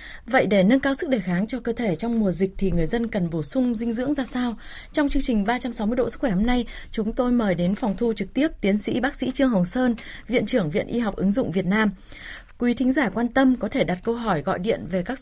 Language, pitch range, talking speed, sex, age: Vietnamese, 195-250 Hz, 275 wpm, female, 20-39